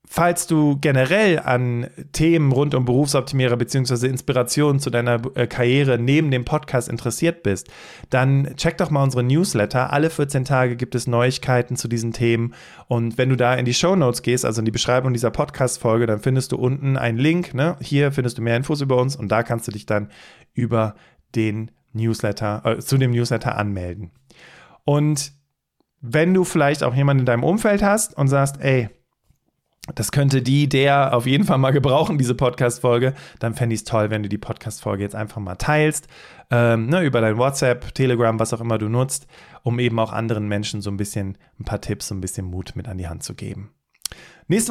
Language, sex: German, male